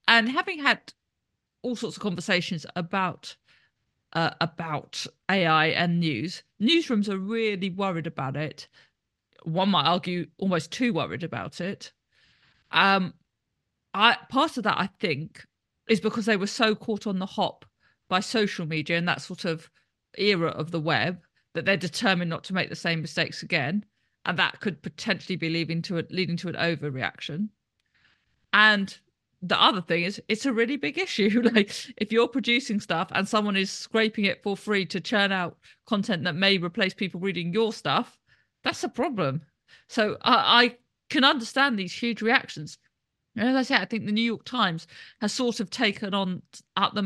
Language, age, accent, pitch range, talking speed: English, 40-59, British, 175-225 Hz, 175 wpm